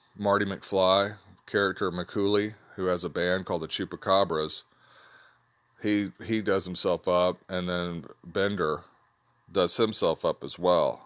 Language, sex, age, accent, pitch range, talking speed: English, male, 40-59, American, 85-95 Hz, 130 wpm